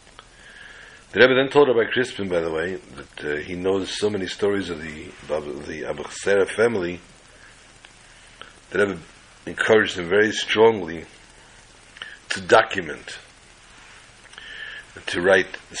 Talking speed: 135 wpm